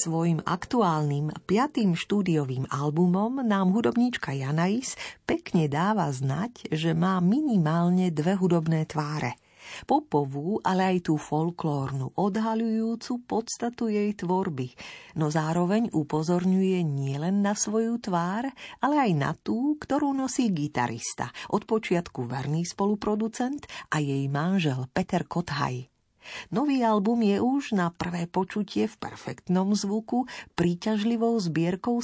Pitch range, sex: 155-210 Hz, female